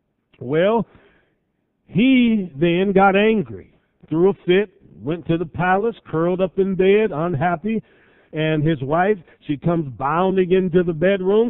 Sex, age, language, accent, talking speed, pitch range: male, 50-69, English, American, 135 wpm, 160-210 Hz